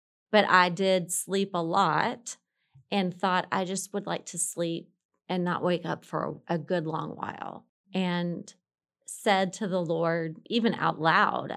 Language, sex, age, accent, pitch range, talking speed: English, female, 30-49, American, 165-195 Hz, 160 wpm